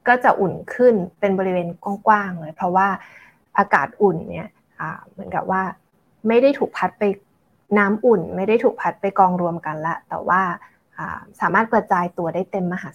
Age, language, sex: 20-39, Thai, female